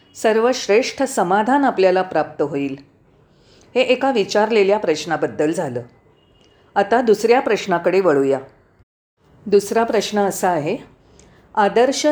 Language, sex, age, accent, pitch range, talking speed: Marathi, female, 40-59, native, 190-260 Hz, 95 wpm